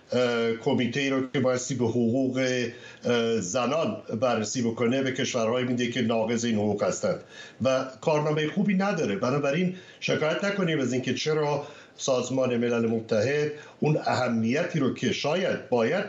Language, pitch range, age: Persian, 125-155 Hz, 60-79